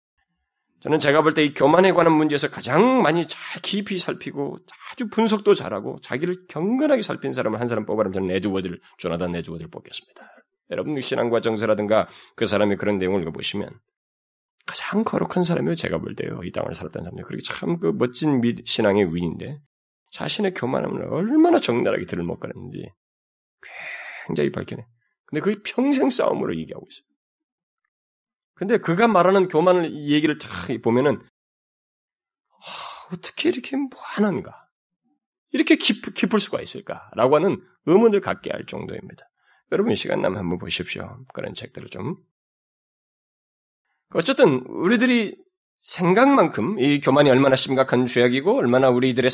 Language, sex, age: Korean, male, 30-49